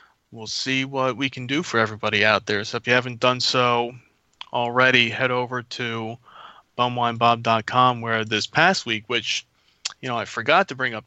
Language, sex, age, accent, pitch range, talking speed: English, male, 30-49, American, 115-125 Hz, 180 wpm